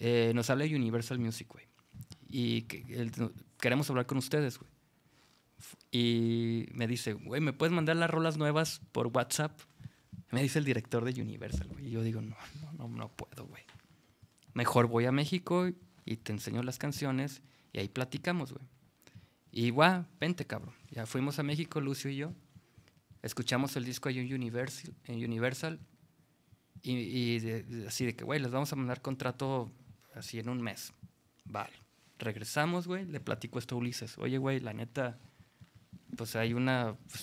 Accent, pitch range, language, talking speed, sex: Mexican, 120-140 Hz, Spanish, 170 wpm, male